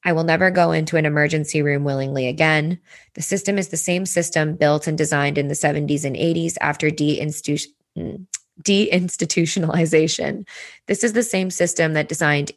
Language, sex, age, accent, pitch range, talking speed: English, female, 20-39, American, 145-170 Hz, 160 wpm